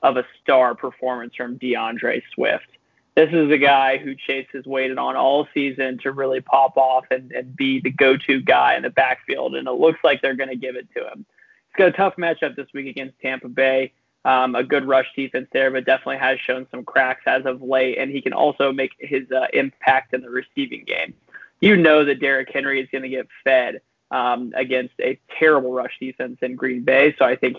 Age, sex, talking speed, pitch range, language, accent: 20-39, male, 220 wpm, 130-150 Hz, English, American